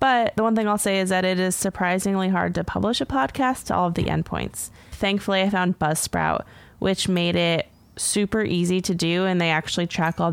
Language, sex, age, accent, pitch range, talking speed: English, female, 20-39, American, 170-205 Hz, 215 wpm